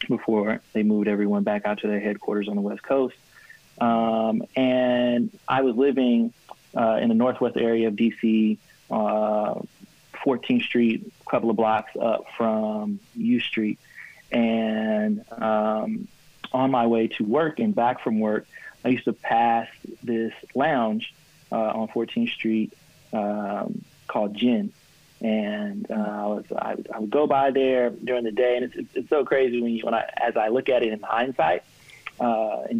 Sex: male